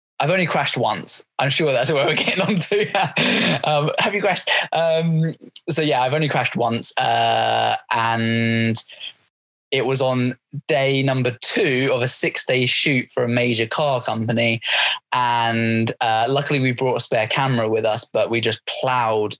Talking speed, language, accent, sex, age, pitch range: 165 wpm, English, British, male, 20-39, 115-140 Hz